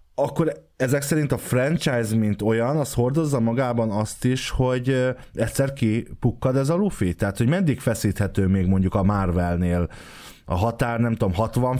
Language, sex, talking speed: Hungarian, male, 160 wpm